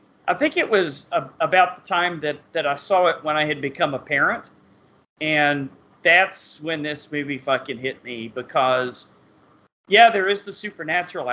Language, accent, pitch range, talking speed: English, American, 145-170 Hz, 170 wpm